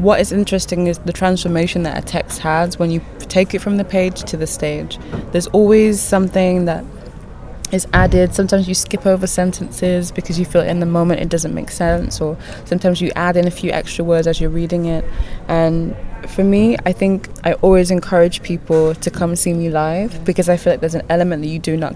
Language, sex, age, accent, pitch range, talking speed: German, female, 20-39, British, 155-185 Hz, 215 wpm